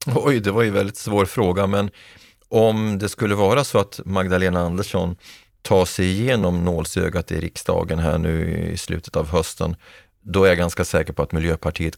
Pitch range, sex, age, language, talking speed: 85-100 Hz, male, 30-49, Swedish, 185 wpm